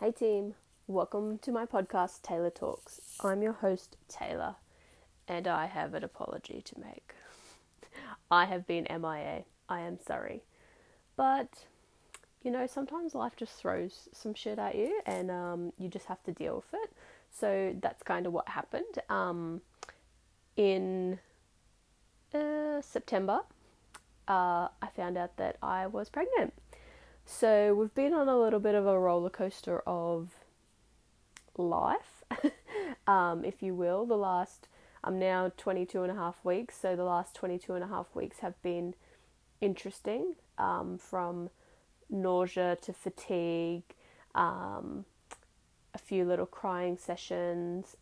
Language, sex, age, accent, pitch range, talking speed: English, female, 20-39, Australian, 175-230 Hz, 140 wpm